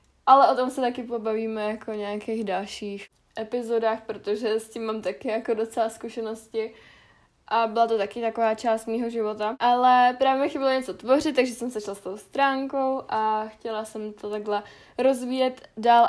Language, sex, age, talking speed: Czech, female, 10-29, 175 wpm